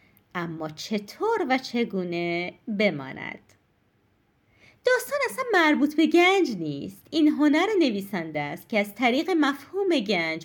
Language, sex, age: Persian, female, 30-49